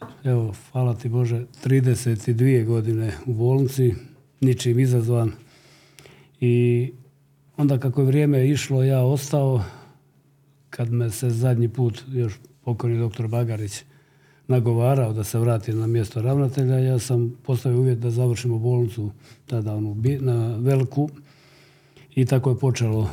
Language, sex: Croatian, male